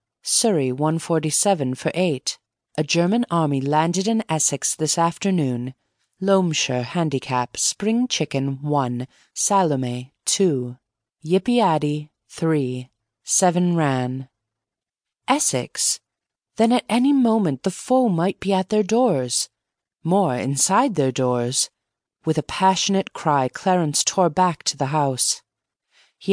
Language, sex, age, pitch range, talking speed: English, female, 30-49, 130-190 Hz, 120 wpm